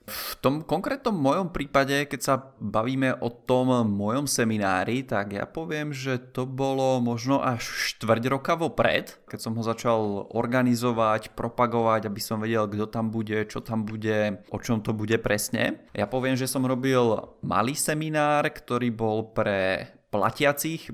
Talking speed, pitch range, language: 155 wpm, 110-130 Hz, Czech